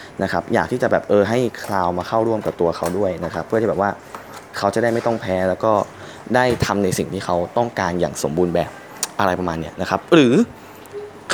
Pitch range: 100-135 Hz